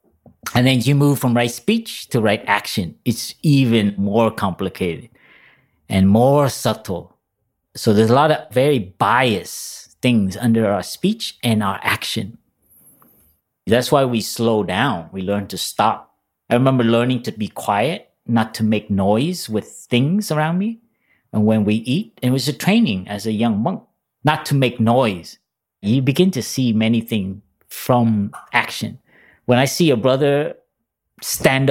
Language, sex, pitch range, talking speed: English, male, 105-135 Hz, 160 wpm